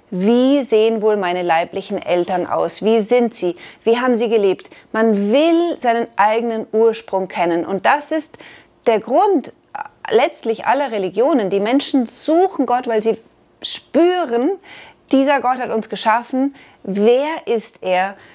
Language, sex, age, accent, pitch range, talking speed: German, female, 30-49, German, 200-275 Hz, 140 wpm